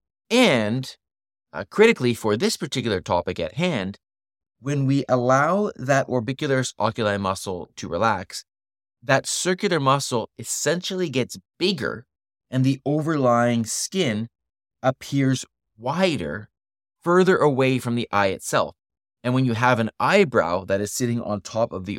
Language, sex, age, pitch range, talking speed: English, male, 30-49, 100-135 Hz, 135 wpm